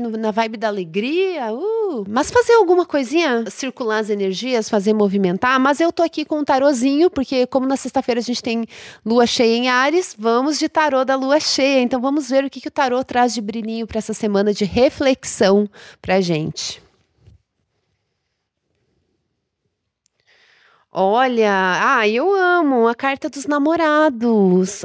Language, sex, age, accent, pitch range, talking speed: Portuguese, female, 30-49, Brazilian, 210-270 Hz, 155 wpm